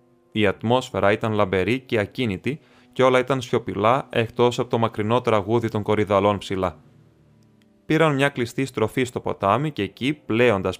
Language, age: Greek, 20-39